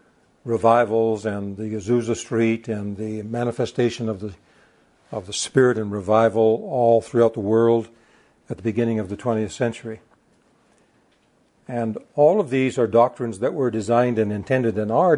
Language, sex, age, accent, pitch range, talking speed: English, male, 60-79, American, 110-120 Hz, 155 wpm